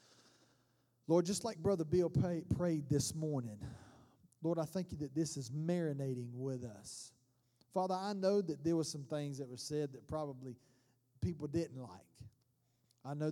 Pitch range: 130-170 Hz